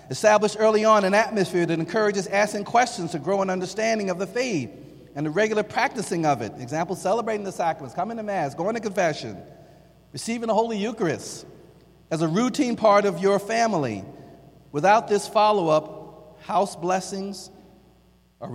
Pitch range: 105-170 Hz